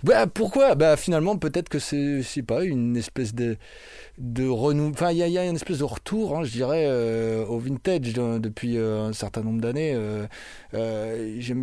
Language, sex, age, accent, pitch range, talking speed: French, male, 20-39, French, 115-150 Hz, 205 wpm